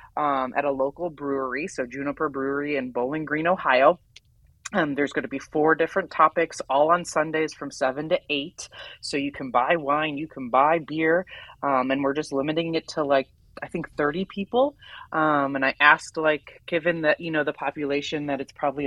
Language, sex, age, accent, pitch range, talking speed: English, female, 20-39, American, 145-185 Hz, 195 wpm